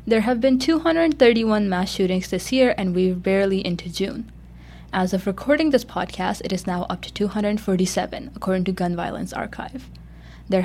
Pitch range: 180-235 Hz